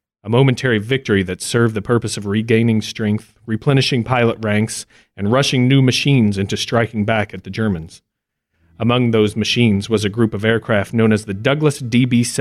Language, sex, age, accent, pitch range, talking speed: English, male, 40-59, American, 105-130 Hz, 175 wpm